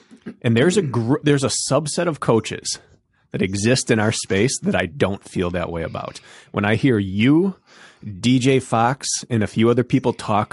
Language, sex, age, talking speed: English, male, 30-49, 190 wpm